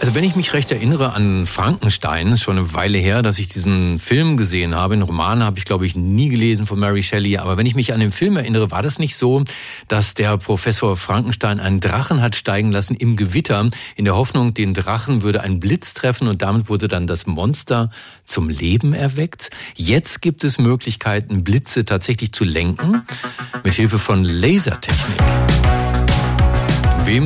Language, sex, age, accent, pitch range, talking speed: German, male, 40-59, German, 100-125 Hz, 185 wpm